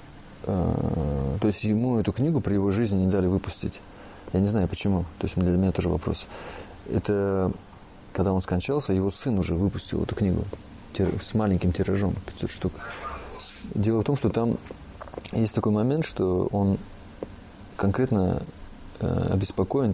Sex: male